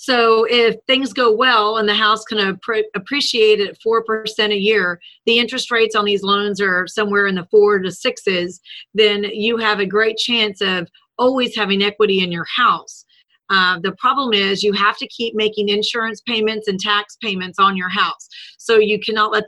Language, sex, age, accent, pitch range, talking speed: English, female, 40-59, American, 195-225 Hz, 190 wpm